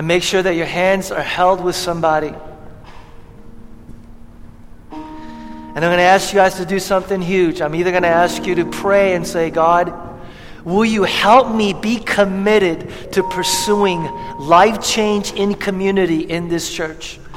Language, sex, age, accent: English, male, 40-59, American